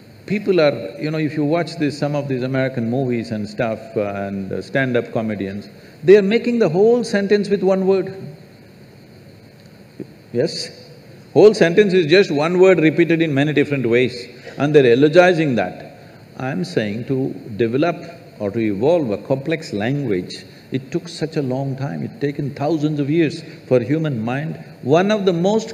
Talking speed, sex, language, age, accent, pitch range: 170 wpm, male, English, 50-69, Indian, 130-175 Hz